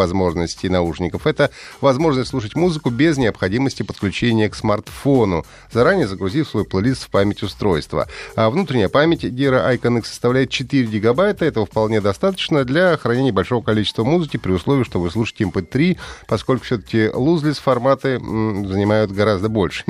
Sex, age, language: male, 30-49, Russian